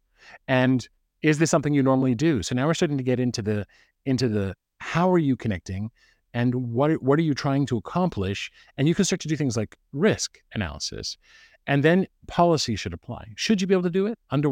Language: English